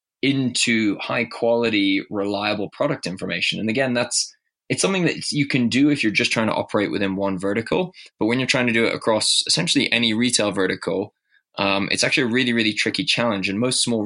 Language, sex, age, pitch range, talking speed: English, male, 20-39, 100-115 Hz, 200 wpm